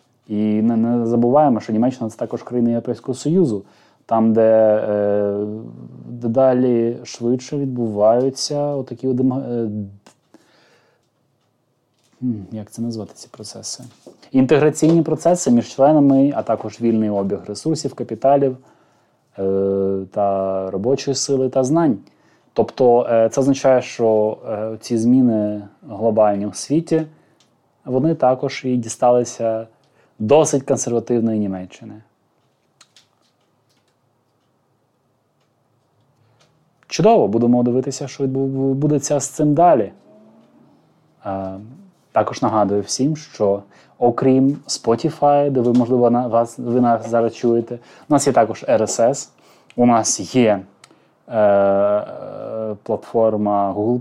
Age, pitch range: 20-39, 110-135 Hz